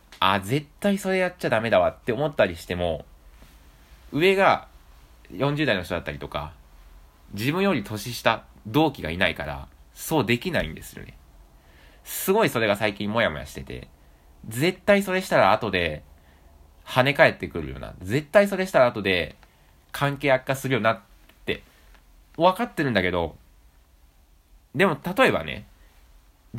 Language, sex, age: Japanese, male, 20-39